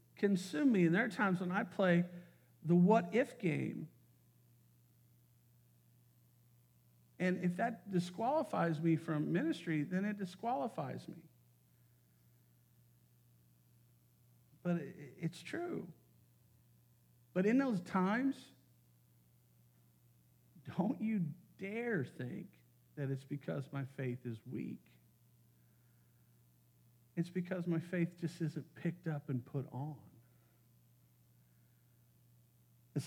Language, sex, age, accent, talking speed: English, male, 50-69, American, 95 wpm